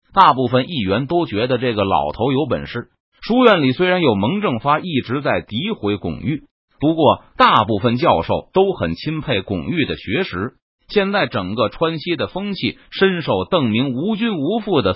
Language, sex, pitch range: Chinese, male, 115-185 Hz